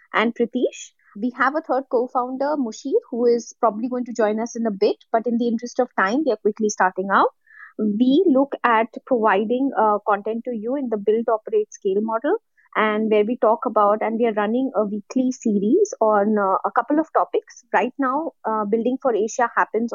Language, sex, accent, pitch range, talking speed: English, female, Indian, 220-265 Hz, 205 wpm